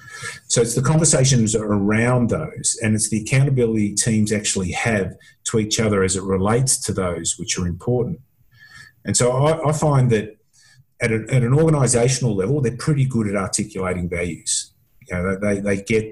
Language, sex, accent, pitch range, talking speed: English, male, Australian, 100-125 Hz, 175 wpm